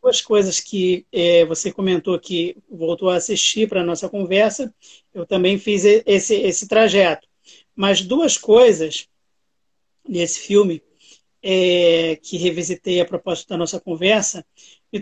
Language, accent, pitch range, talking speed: Portuguese, Brazilian, 195-250 Hz, 130 wpm